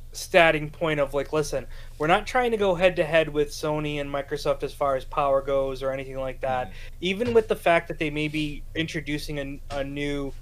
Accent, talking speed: American, 220 wpm